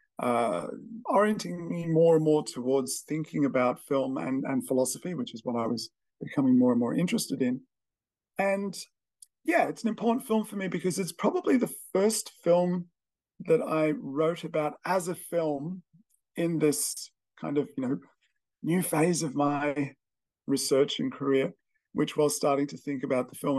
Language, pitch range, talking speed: English, 140-185 Hz, 170 wpm